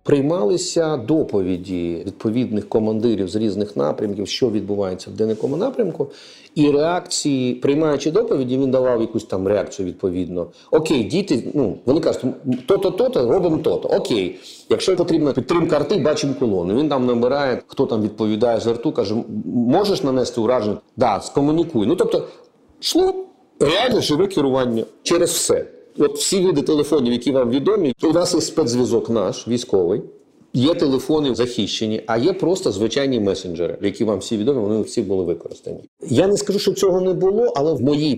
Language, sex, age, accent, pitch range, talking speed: Ukrainian, male, 40-59, native, 115-185 Hz, 155 wpm